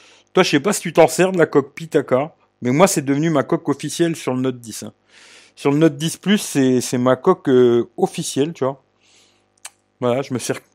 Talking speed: 225 wpm